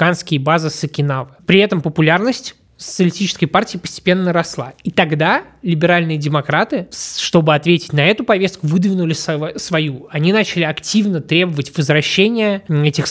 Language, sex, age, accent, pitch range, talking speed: Russian, male, 20-39, native, 150-190 Hz, 120 wpm